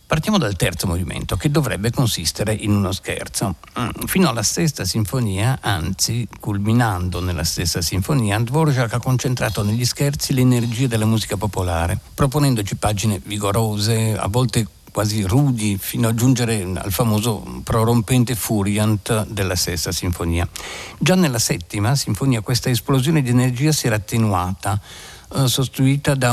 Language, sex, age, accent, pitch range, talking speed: Italian, male, 50-69, native, 100-130 Hz, 130 wpm